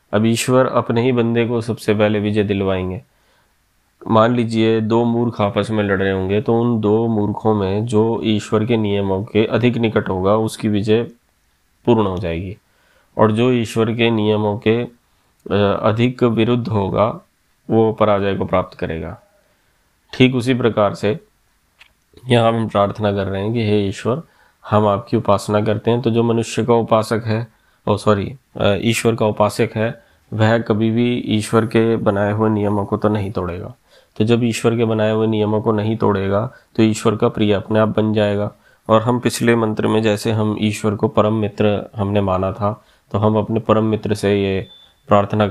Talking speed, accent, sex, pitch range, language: 175 wpm, native, male, 100-115 Hz, Hindi